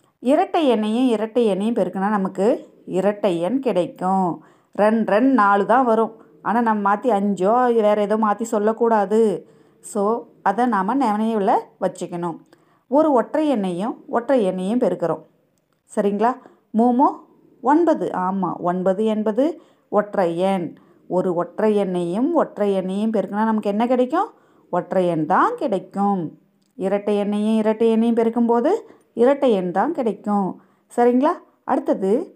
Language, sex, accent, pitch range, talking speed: Tamil, female, native, 195-255 Hz, 120 wpm